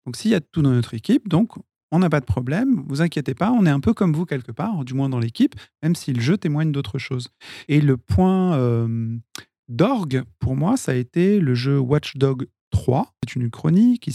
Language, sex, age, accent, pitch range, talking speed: French, male, 40-59, French, 125-170 Hz, 230 wpm